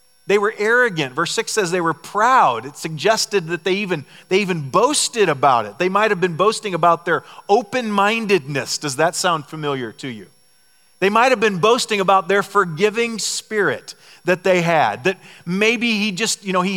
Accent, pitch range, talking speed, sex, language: American, 160-210 Hz, 190 wpm, male, English